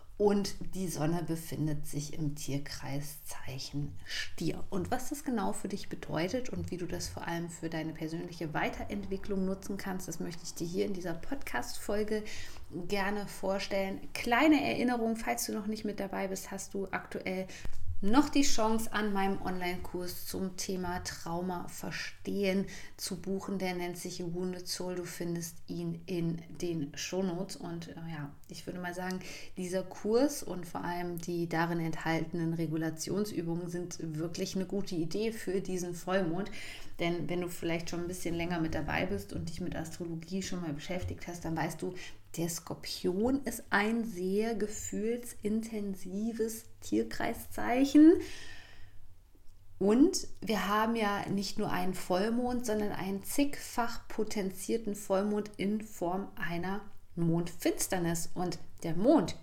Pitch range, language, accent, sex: 170-205 Hz, German, German, female